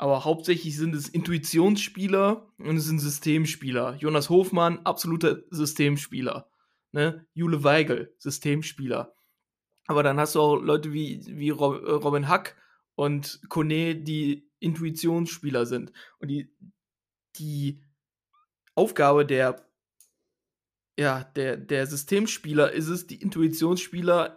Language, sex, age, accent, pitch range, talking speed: German, male, 20-39, German, 150-190 Hz, 105 wpm